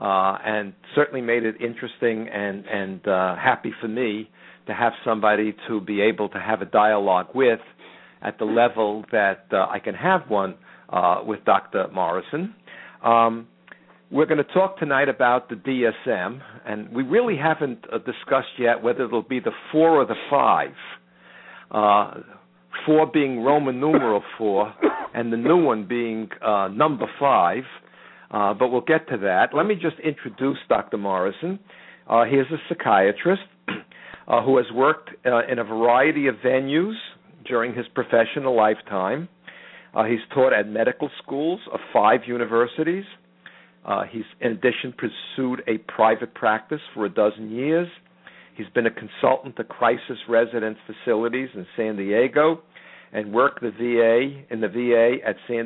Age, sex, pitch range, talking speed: 60-79, male, 110-140 Hz, 160 wpm